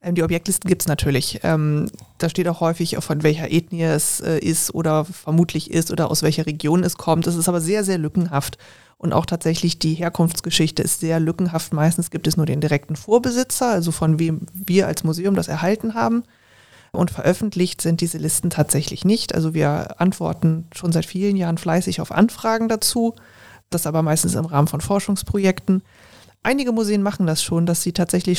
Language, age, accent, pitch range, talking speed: German, 30-49, German, 160-180 Hz, 180 wpm